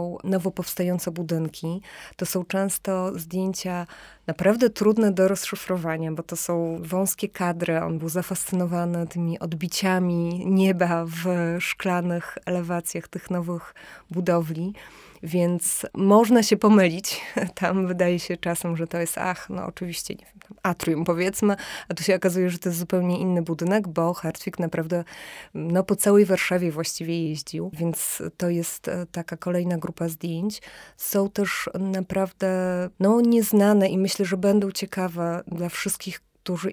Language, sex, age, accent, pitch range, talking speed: Polish, female, 20-39, native, 175-195 Hz, 140 wpm